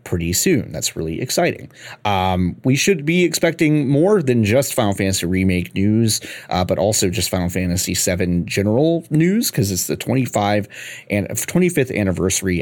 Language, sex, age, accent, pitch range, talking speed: English, male, 30-49, American, 95-140 Hz, 155 wpm